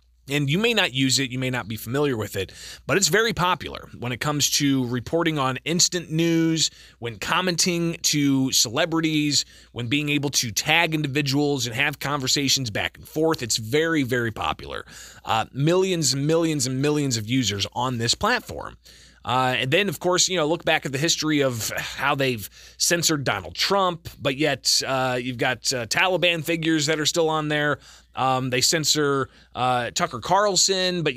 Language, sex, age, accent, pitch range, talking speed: English, male, 20-39, American, 125-160 Hz, 180 wpm